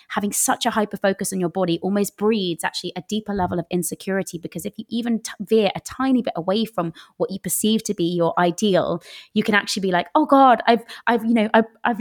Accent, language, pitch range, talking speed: British, English, 175-220 Hz, 225 wpm